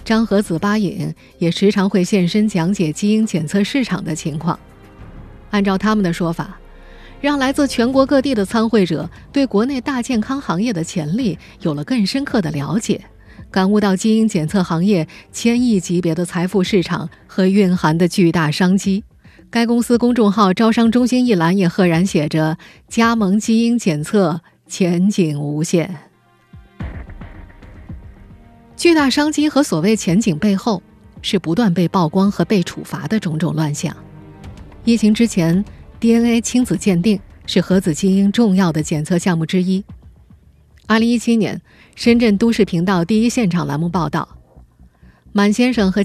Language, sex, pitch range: Chinese, female, 170-230 Hz